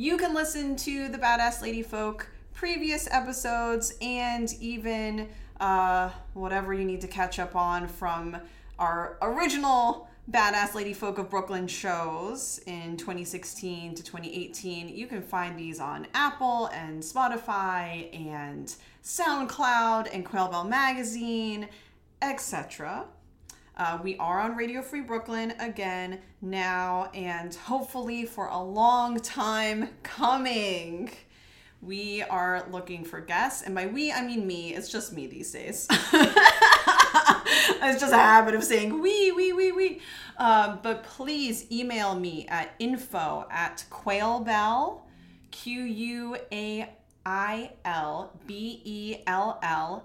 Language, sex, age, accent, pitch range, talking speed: English, female, 30-49, American, 185-250 Hz, 125 wpm